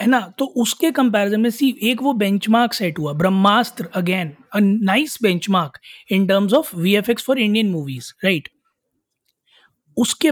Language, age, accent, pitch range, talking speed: Hindi, 20-39, native, 180-215 Hz, 145 wpm